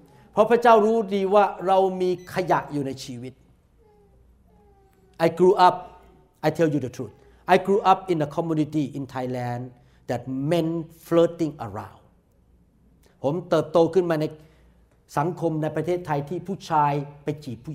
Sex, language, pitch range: male, Thai, 130-195 Hz